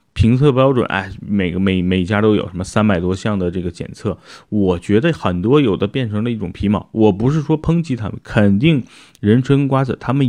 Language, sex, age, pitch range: Chinese, male, 30-49, 95-115 Hz